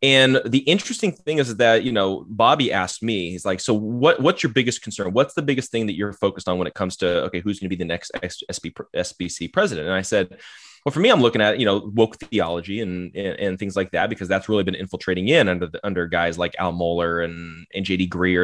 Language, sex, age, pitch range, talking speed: English, male, 20-39, 95-135 Hz, 245 wpm